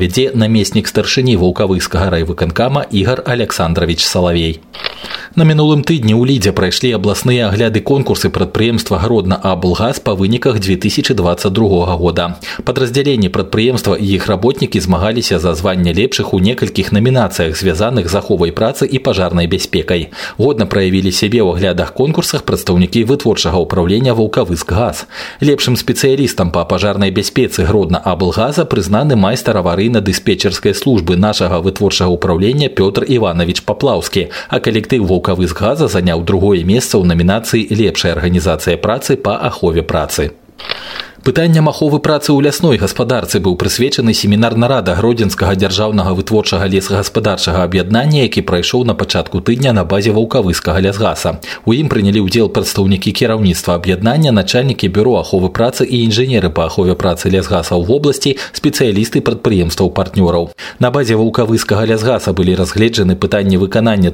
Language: Russian